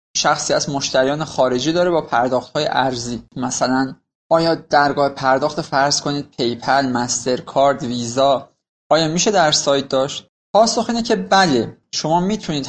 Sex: male